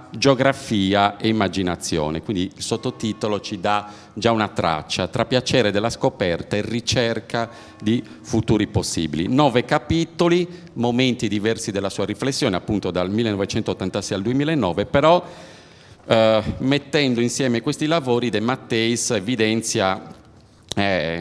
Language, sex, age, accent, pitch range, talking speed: Italian, male, 40-59, native, 95-125 Hz, 120 wpm